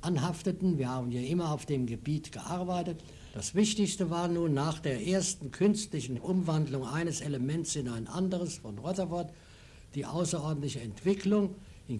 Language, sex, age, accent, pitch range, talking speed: German, male, 60-79, German, 130-185 Hz, 145 wpm